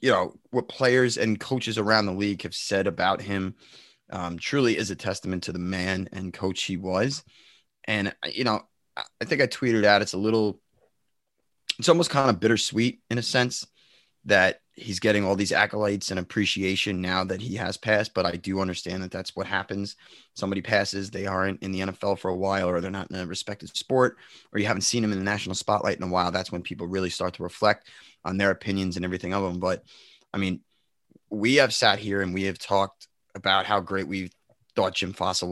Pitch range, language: 95-110 Hz, English